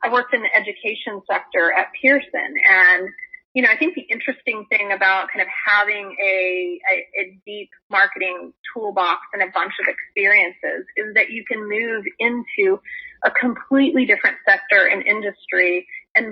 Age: 30-49